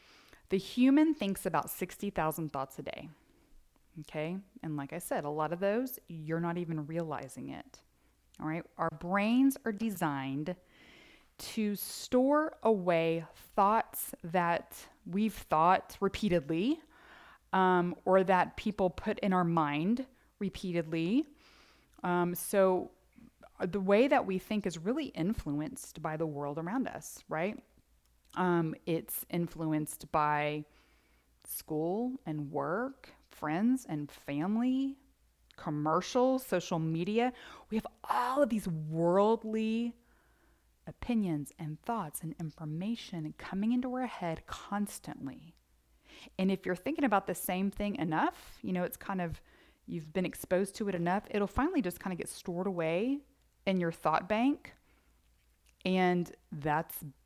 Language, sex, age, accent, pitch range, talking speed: English, female, 30-49, American, 160-220 Hz, 130 wpm